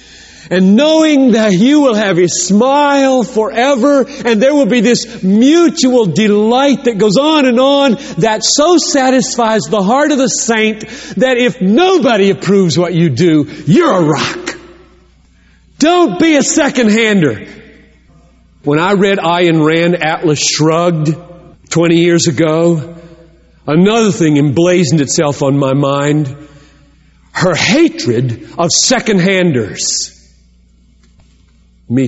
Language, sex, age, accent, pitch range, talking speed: English, male, 40-59, American, 170-275 Hz, 120 wpm